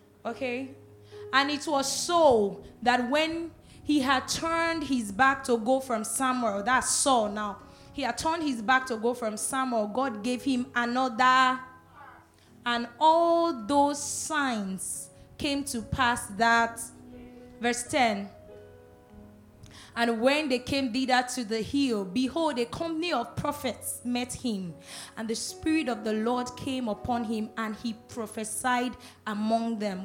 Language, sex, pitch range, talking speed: English, female, 220-270 Hz, 145 wpm